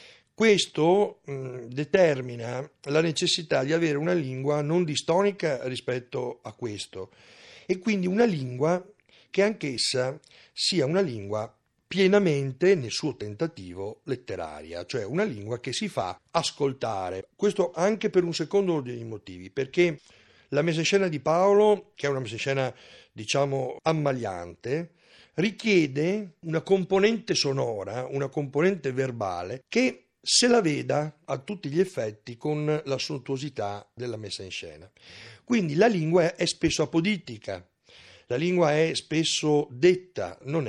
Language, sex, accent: Italian, male, native